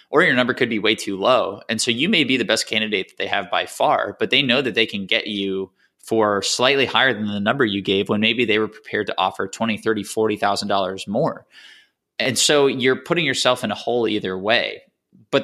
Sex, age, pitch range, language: male, 20-39, 105-125 Hz, English